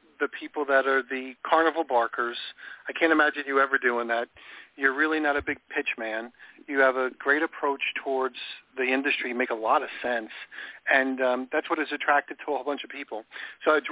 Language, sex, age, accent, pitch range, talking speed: English, male, 40-59, American, 120-140 Hz, 205 wpm